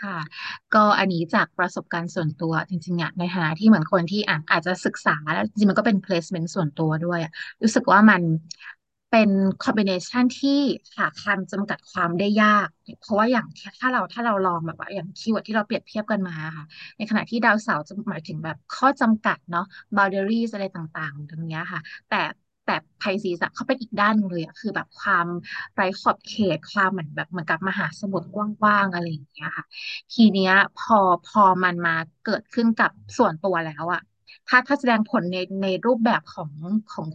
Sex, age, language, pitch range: female, 20-39, Thai, 175-220 Hz